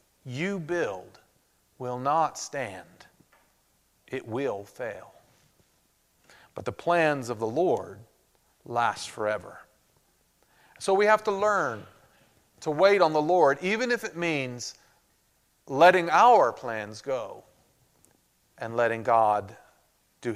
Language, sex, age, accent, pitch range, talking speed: English, male, 40-59, American, 135-195 Hz, 110 wpm